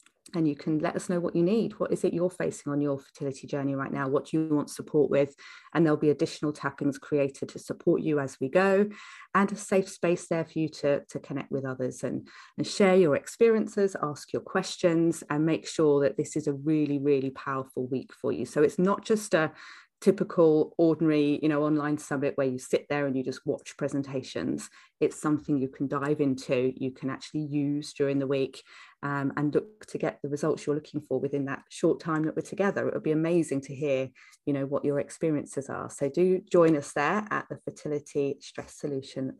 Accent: British